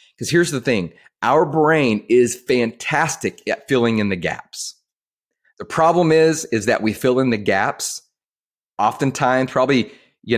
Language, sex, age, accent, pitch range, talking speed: English, male, 30-49, American, 115-160 Hz, 150 wpm